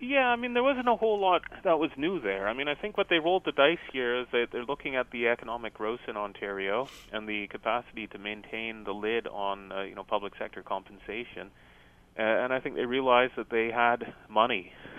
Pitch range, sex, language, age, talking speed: 95-110 Hz, male, English, 30-49, 225 wpm